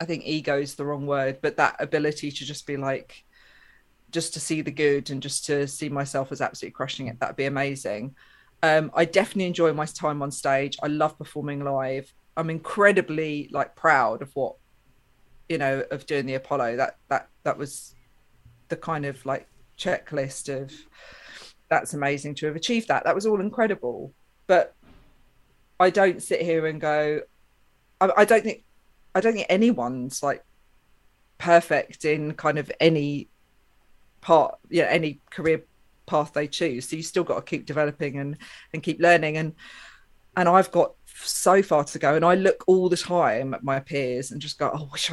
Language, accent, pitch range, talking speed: English, British, 140-165 Hz, 180 wpm